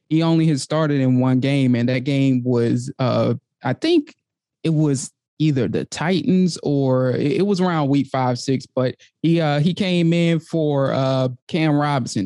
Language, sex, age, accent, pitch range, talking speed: English, male, 20-39, American, 135-170 Hz, 175 wpm